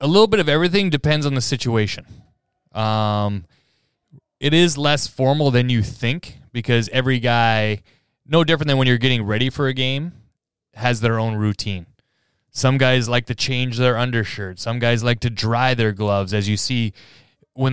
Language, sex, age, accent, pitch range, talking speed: English, male, 20-39, American, 110-130 Hz, 175 wpm